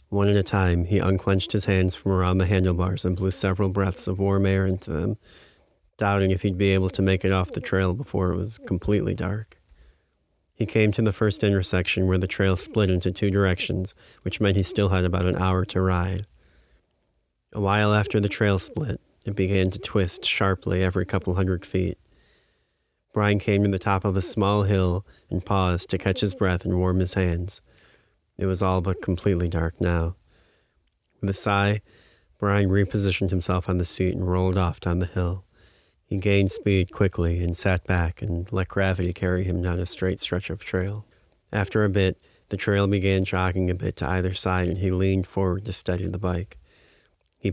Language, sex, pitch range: English, male, 90-100 Hz